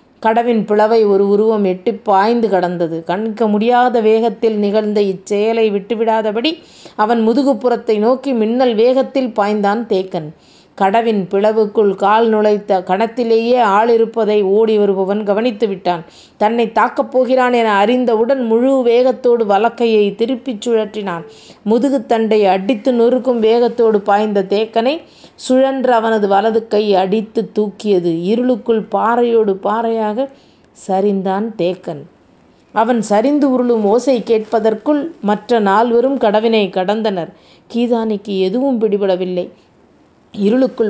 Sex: female